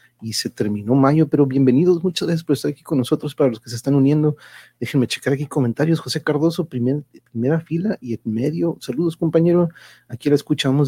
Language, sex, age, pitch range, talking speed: Spanish, male, 40-59, 120-150 Hz, 200 wpm